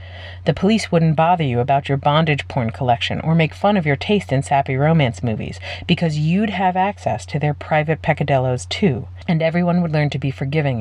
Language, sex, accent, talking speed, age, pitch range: English, female, American, 200 wpm, 40-59, 110-175 Hz